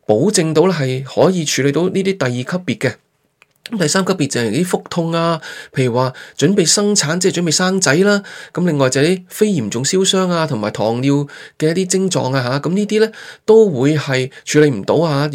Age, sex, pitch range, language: 20-39, male, 140-190 Hz, Chinese